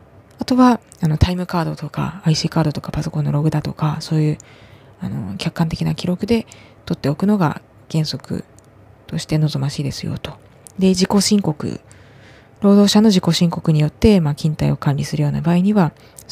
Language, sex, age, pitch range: Japanese, female, 20-39, 135-180 Hz